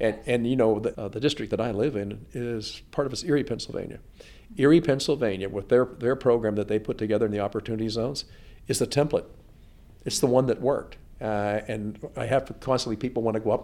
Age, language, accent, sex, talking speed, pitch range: 50-69, English, American, male, 220 wpm, 105-125 Hz